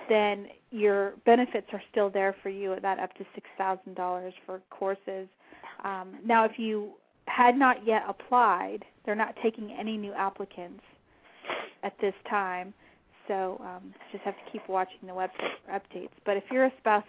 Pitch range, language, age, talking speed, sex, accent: 190-215 Hz, English, 30-49, 165 wpm, female, American